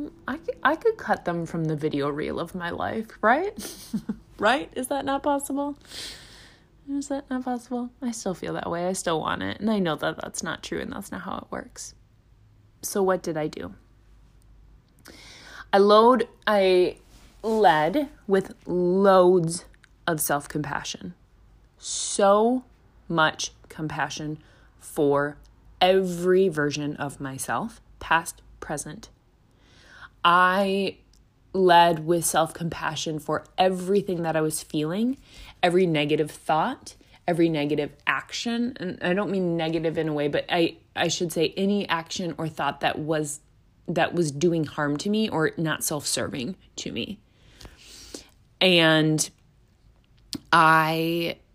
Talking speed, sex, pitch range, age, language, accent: 135 wpm, female, 145-195 Hz, 20-39, English, American